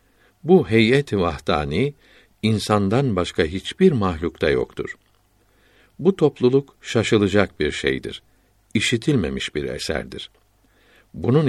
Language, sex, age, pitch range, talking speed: Turkish, male, 60-79, 95-120 Hz, 90 wpm